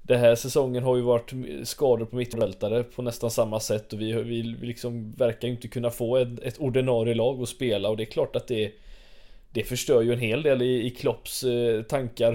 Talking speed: 215 wpm